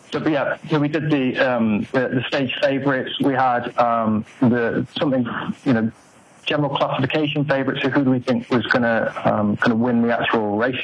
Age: 30-49